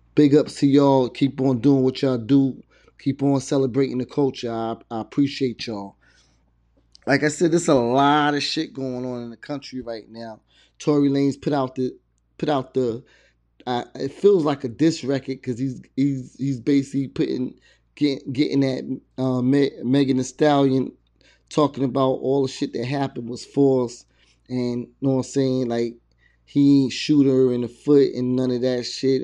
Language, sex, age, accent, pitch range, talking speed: English, male, 20-39, American, 125-140 Hz, 185 wpm